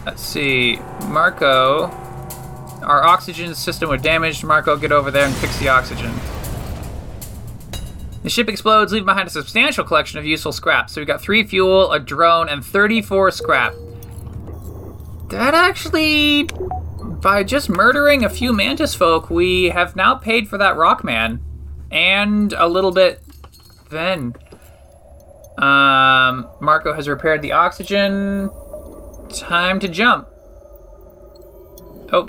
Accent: American